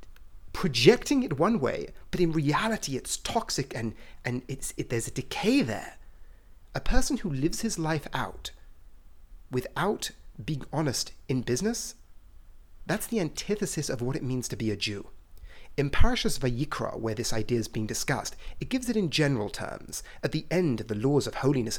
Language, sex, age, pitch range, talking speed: English, male, 30-49, 115-185 Hz, 175 wpm